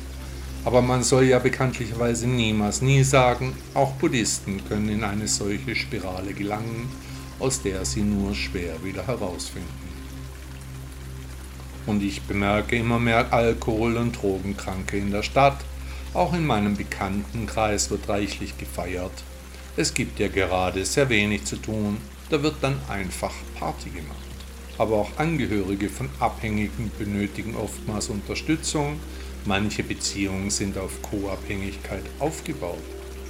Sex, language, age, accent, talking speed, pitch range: male, German, 50-69, German, 125 wpm, 70-115 Hz